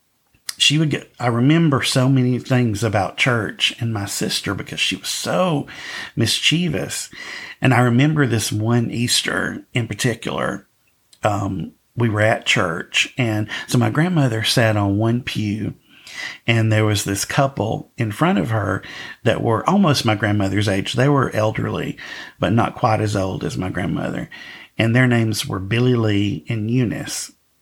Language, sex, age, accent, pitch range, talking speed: English, male, 50-69, American, 105-125 Hz, 160 wpm